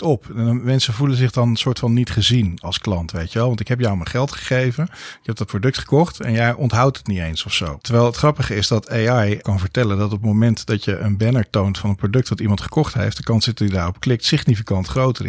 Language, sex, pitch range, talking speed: Dutch, male, 105-120 Hz, 270 wpm